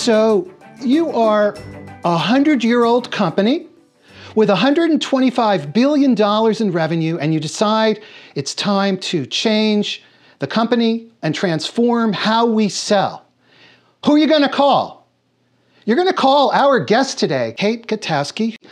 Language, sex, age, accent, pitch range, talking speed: English, male, 40-59, American, 170-235 Hz, 130 wpm